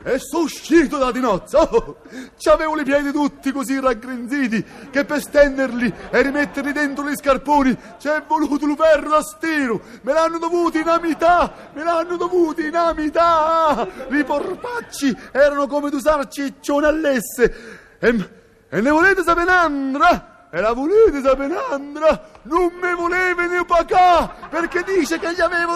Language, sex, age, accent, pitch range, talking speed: Italian, male, 30-49, native, 275-350 Hz, 150 wpm